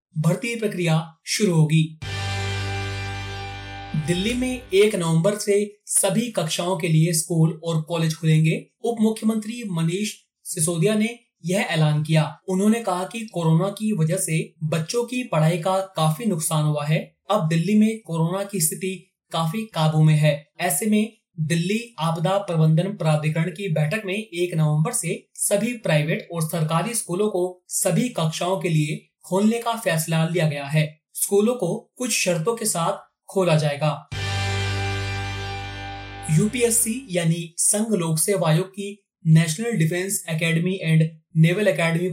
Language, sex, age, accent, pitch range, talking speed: Hindi, male, 30-49, native, 155-200 Hz, 140 wpm